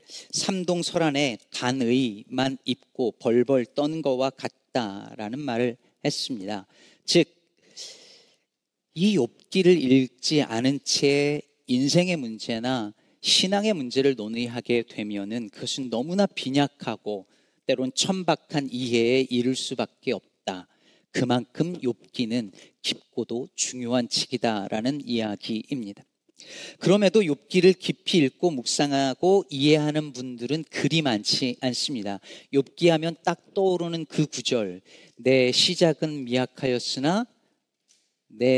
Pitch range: 120-160 Hz